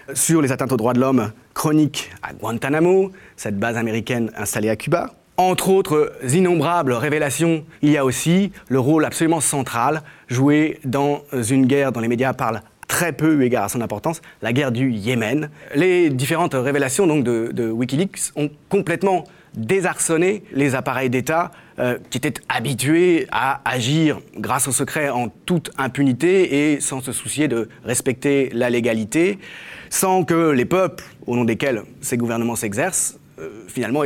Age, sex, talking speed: 30-49, male, 160 wpm